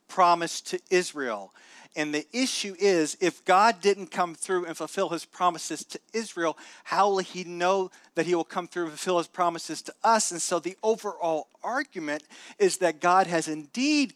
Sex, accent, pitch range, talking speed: male, American, 155-185 Hz, 180 wpm